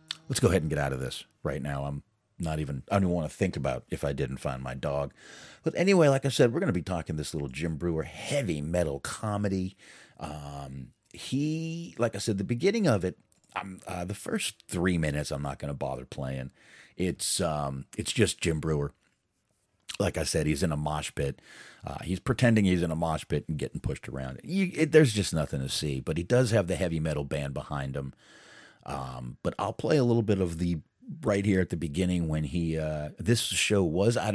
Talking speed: 225 wpm